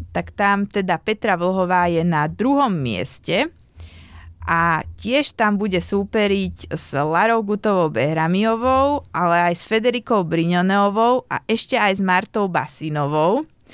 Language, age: Slovak, 20-39